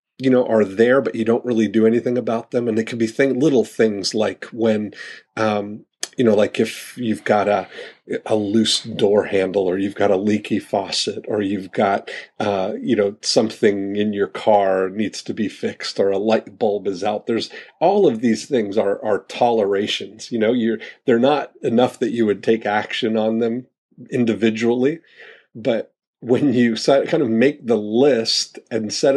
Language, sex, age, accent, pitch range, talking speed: English, male, 40-59, American, 105-120 Hz, 185 wpm